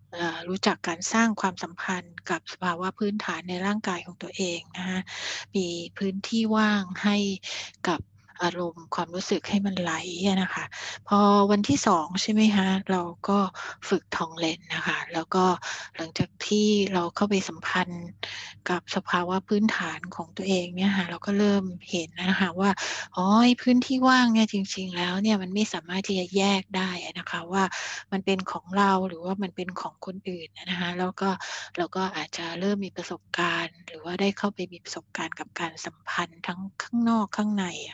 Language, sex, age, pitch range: English, female, 60-79, 175-200 Hz